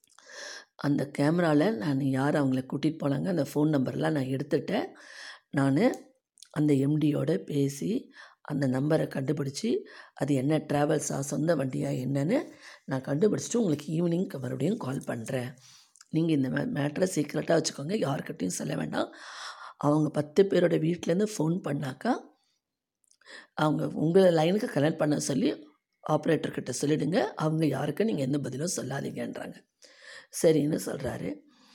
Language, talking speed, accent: Tamil, 115 wpm, native